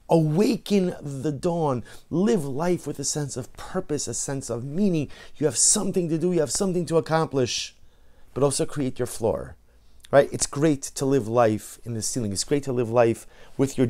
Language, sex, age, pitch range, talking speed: English, male, 30-49, 110-145 Hz, 195 wpm